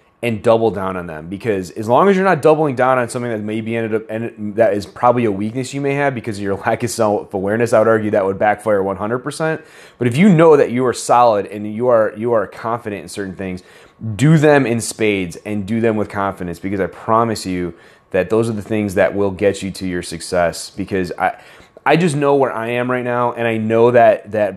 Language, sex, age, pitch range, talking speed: English, male, 30-49, 100-120 Hz, 240 wpm